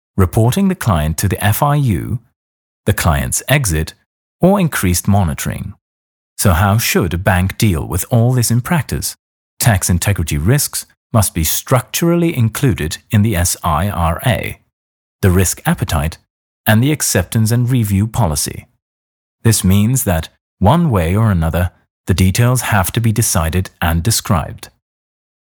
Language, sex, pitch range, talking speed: Dutch, male, 85-120 Hz, 135 wpm